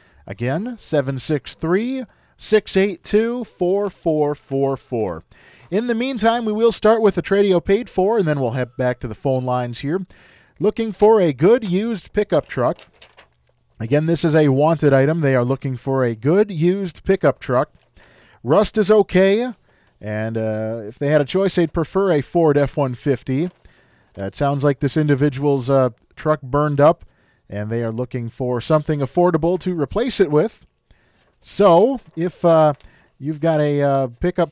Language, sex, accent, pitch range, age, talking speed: English, male, American, 135-185 Hz, 40-59, 155 wpm